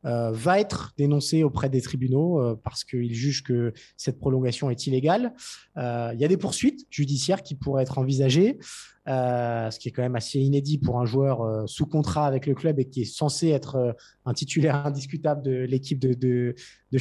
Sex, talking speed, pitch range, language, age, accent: male, 200 wpm, 130-160 Hz, French, 20-39, French